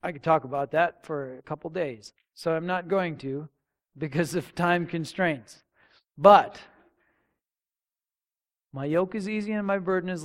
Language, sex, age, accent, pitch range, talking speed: English, male, 40-59, American, 150-200 Hz, 165 wpm